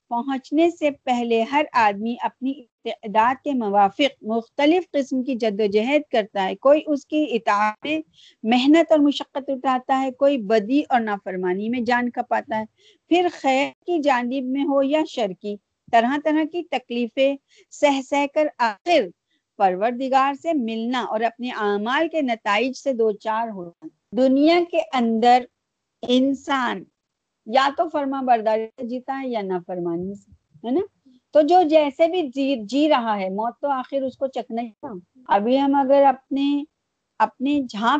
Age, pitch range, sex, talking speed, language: 50-69, 225-295 Hz, female, 155 wpm, Urdu